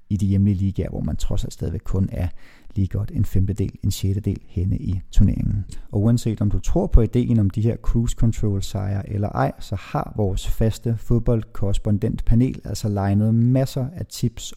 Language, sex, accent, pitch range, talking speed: Danish, male, native, 100-120 Hz, 190 wpm